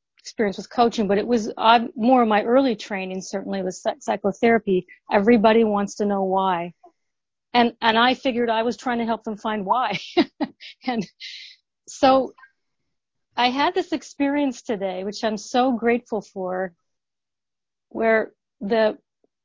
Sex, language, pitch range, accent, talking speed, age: female, English, 205-260 Hz, American, 140 wpm, 40-59